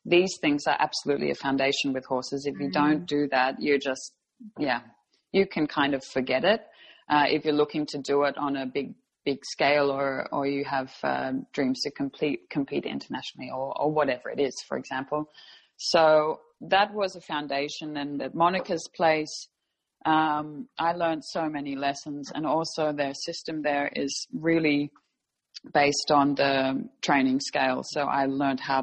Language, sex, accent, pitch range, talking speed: English, female, Australian, 140-160 Hz, 170 wpm